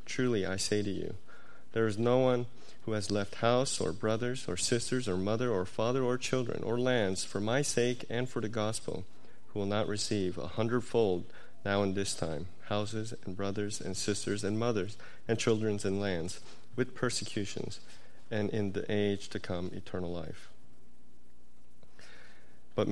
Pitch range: 95-120 Hz